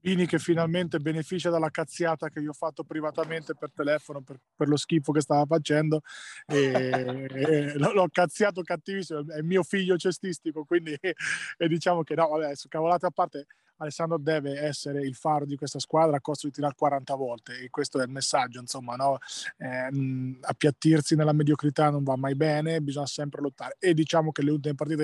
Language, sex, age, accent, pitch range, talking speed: Italian, male, 20-39, native, 145-165 Hz, 185 wpm